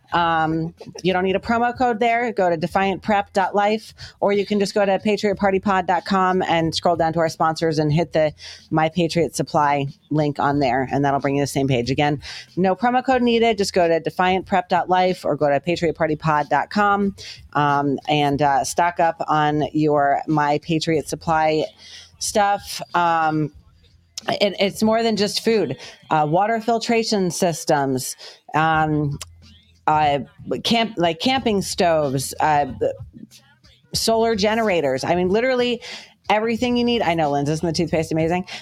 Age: 30-49